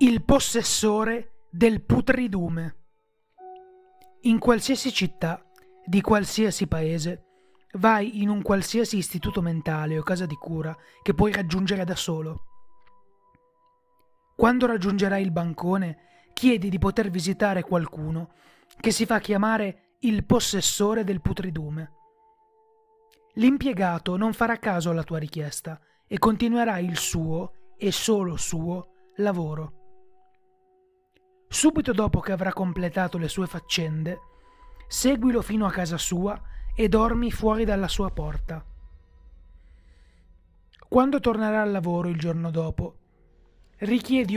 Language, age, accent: Italian, 30-49, native